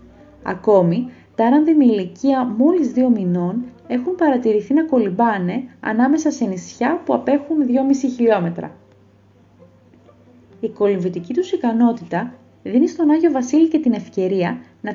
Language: Greek